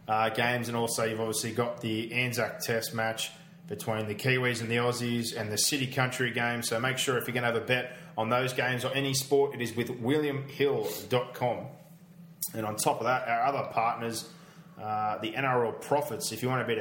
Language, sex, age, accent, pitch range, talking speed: English, male, 20-39, Australian, 115-140 Hz, 210 wpm